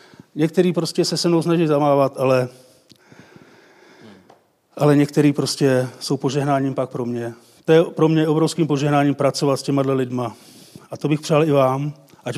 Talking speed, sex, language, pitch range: 160 wpm, male, Czech, 130-170 Hz